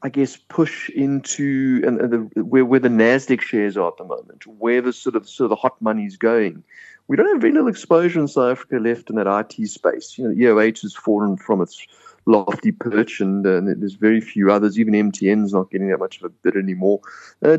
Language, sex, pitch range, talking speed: English, male, 110-155 Hz, 220 wpm